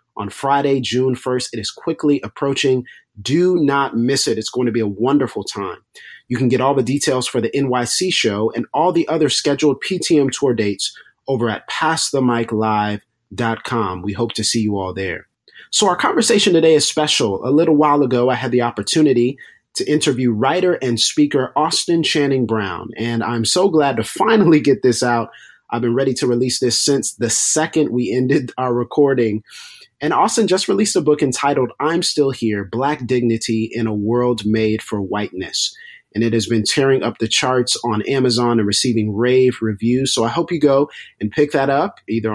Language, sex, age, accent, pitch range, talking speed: English, male, 30-49, American, 115-145 Hz, 190 wpm